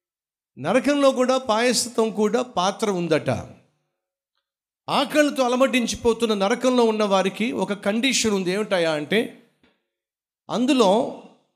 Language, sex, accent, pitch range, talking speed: Telugu, male, native, 185-250 Hz, 85 wpm